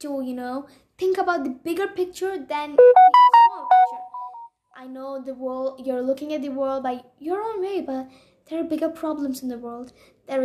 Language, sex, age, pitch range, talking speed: English, female, 20-39, 265-320 Hz, 195 wpm